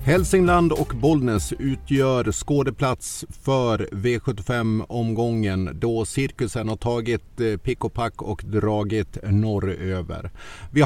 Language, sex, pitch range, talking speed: Swedish, male, 100-130 Hz, 100 wpm